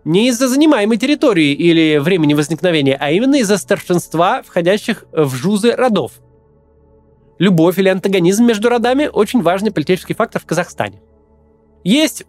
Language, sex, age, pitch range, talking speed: Russian, male, 20-39, 155-225 Hz, 130 wpm